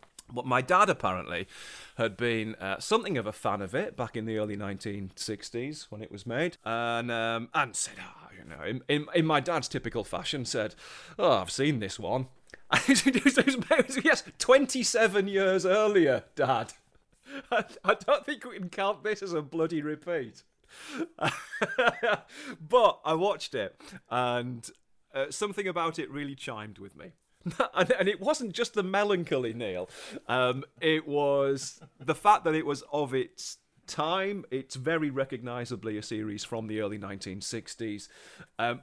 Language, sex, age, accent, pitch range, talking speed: English, male, 30-49, British, 110-175 Hz, 155 wpm